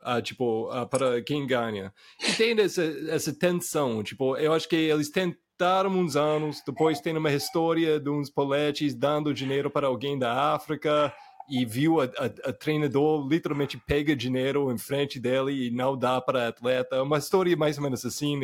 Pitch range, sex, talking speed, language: 140-180 Hz, male, 180 wpm, Portuguese